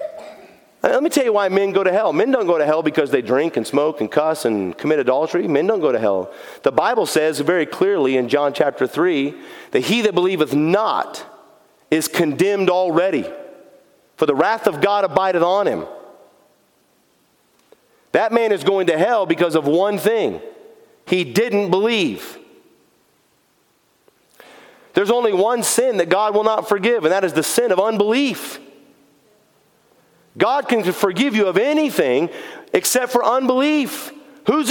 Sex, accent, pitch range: male, American, 195-280 Hz